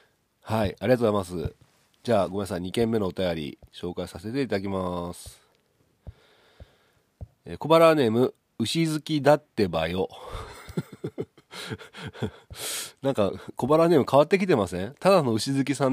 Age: 40-59